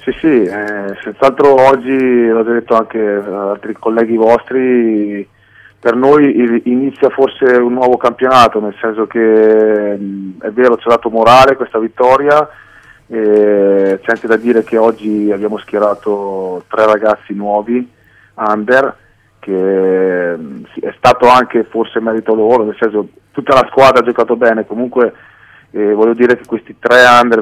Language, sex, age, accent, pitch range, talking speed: Italian, male, 30-49, native, 105-120 Hz, 150 wpm